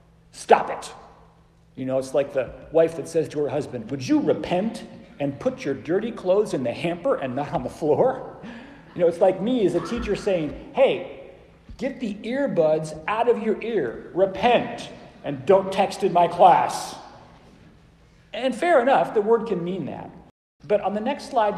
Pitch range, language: 160-220 Hz, English